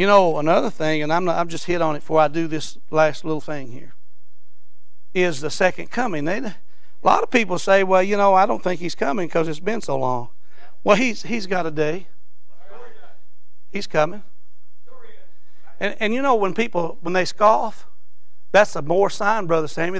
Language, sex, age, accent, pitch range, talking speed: English, male, 60-79, American, 140-195 Hz, 200 wpm